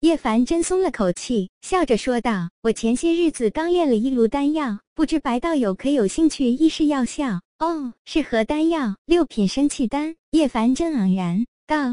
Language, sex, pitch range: Chinese, male, 225-315 Hz